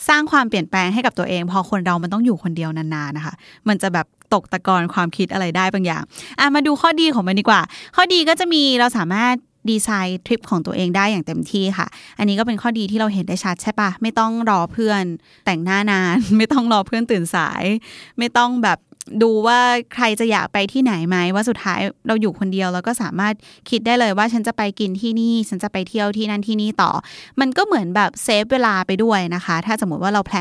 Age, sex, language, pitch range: 20-39, female, Thai, 185-240 Hz